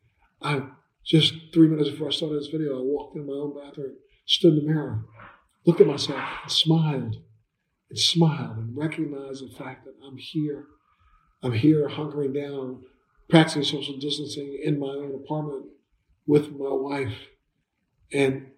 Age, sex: 50-69, male